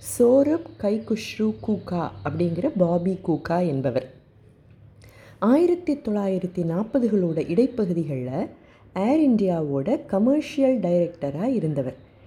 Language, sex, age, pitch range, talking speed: Tamil, female, 30-49, 165-220 Hz, 75 wpm